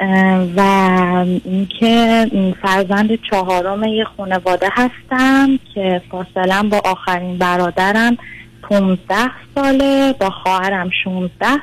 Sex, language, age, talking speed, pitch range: female, Persian, 30-49, 90 wpm, 185-235 Hz